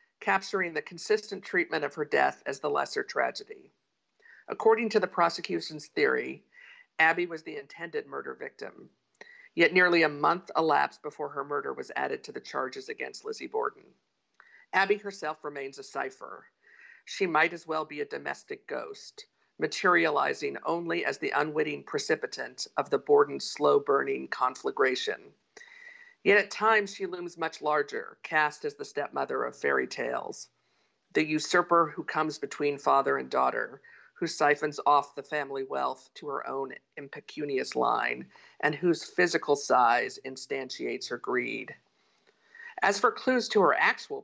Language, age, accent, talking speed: English, 50-69, American, 145 wpm